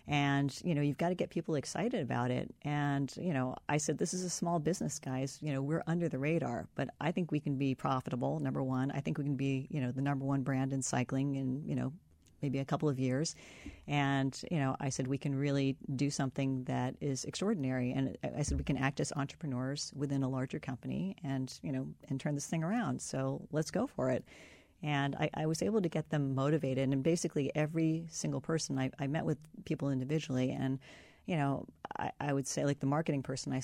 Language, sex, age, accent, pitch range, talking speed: English, female, 40-59, American, 135-155 Hz, 230 wpm